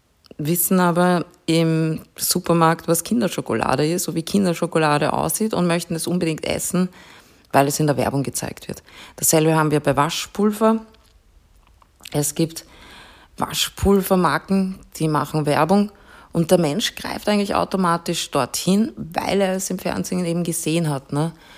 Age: 20-39